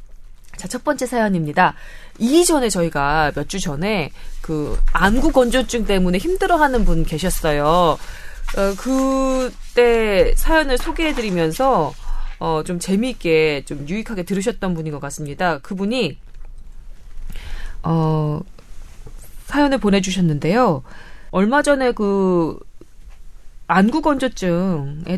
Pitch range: 160-250 Hz